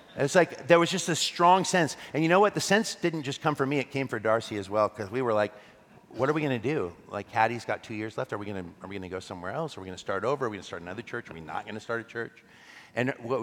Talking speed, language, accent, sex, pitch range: 315 wpm, English, American, male, 100-125 Hz